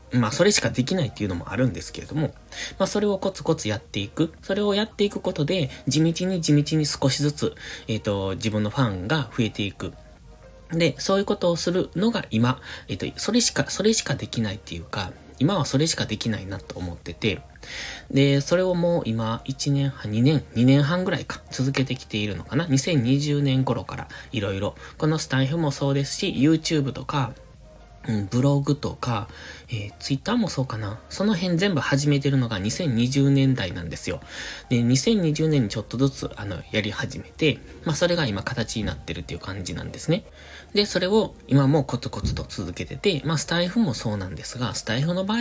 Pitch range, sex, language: 110-160 Hz, male, Japanese